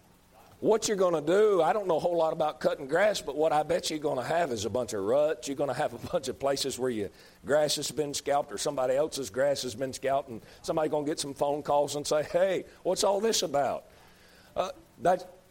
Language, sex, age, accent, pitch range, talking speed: English, male, 50-69, American, 140-195 Hz, 250 wpm